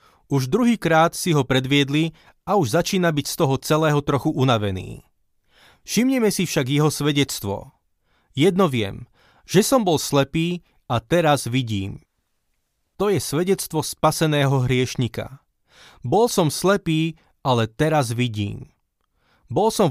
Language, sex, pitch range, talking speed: Slovak, male, 130-165 Hz, 125 wpm